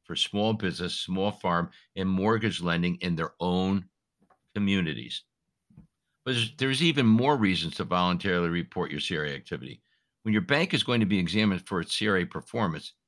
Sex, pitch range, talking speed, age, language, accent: male, 90-115 Hz, 165 wpm, 60-79, English, American